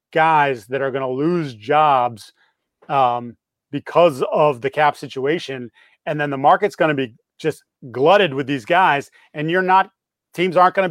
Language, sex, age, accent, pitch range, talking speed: English, male, 30-49, American, 145-175 Hz, 175 wpm